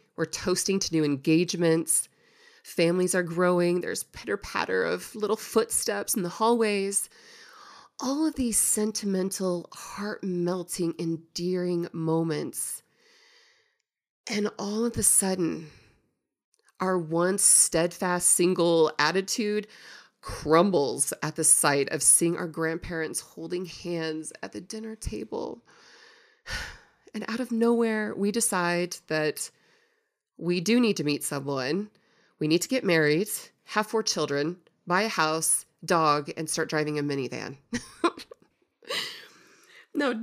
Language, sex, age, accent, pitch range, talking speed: English, female, 30-49, American, 165-220 Hz, 115 wpm